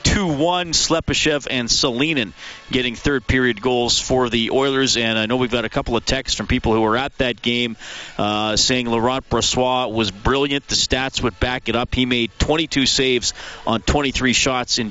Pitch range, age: 115-140 Hz, 40-59